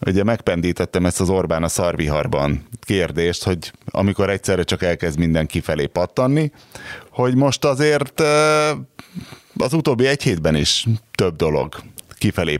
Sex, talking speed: male, 130 wpm